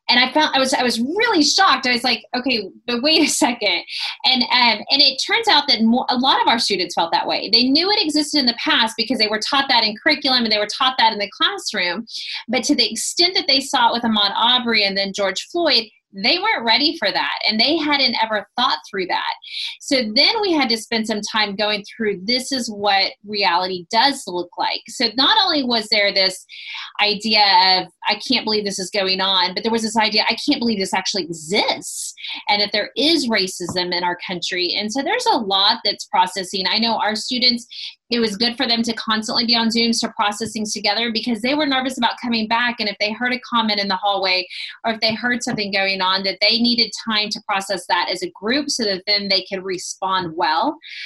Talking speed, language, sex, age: 235 wpm, English, female, 30-49